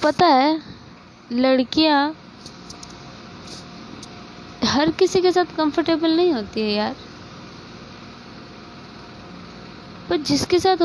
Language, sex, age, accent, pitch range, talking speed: Hindi, female, 20-39, native, 205-275 Hz, 85 wpm